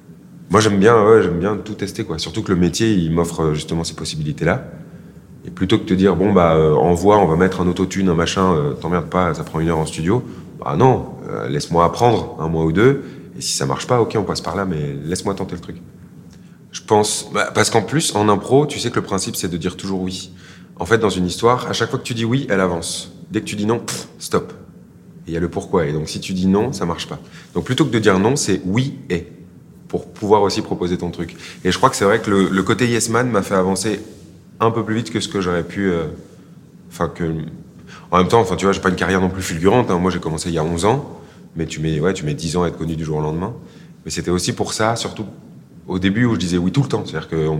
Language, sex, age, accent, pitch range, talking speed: French, male, 30-49, French, 85-105 Hz, 270 wpm